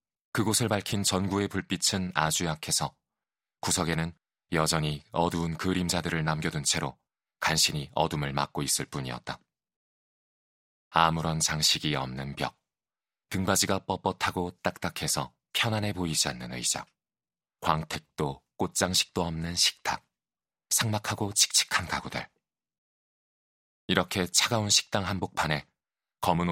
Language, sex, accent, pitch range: Korean, male, native, 75-95 Hz